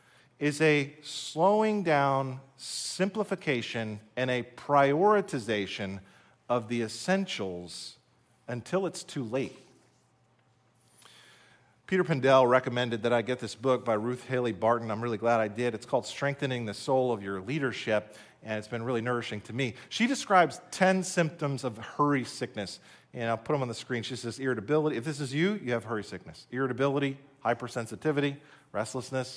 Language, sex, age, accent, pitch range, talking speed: English, male, 40-59, American, 115-145 Hz, 155 wpm